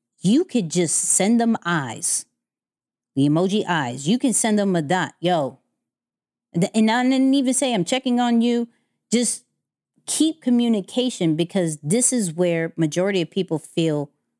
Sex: female